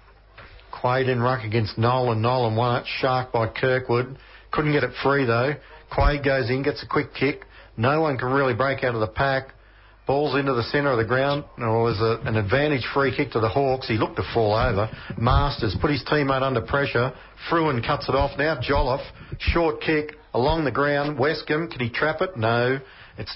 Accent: Australian